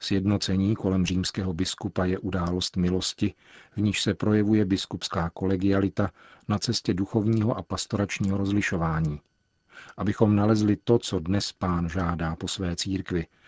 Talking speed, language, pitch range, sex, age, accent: 130 wpm, Czech, 90-105 Hz, male, 40-59, native